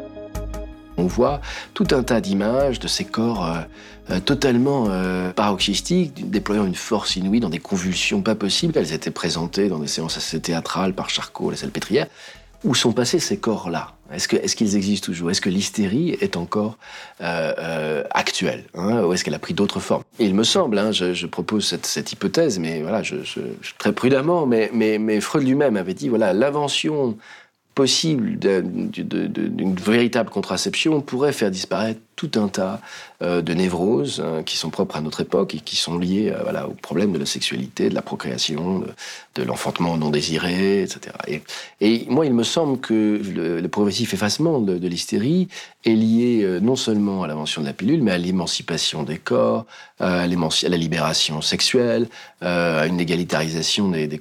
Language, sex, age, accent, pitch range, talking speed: French, male, 40-59, French, 90-115 Hz, 190 wpm